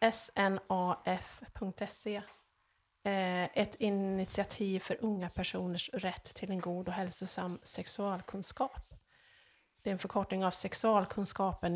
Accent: native